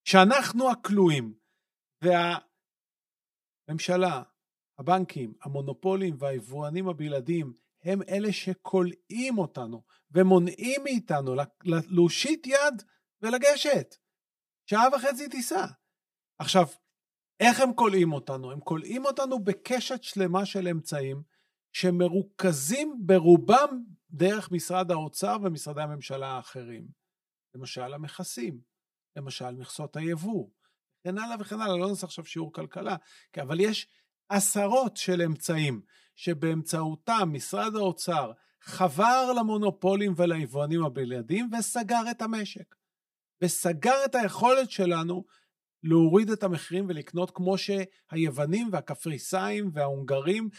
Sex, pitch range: male, 170-205 Hz